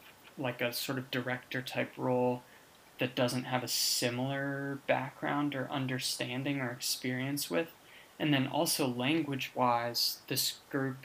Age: 20-39